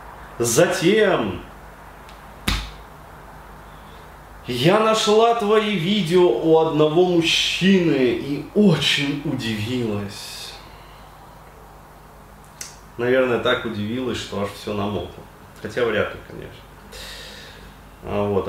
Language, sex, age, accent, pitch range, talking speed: Russian, male, 20-39, native, 105-160 Hz, 75 wpm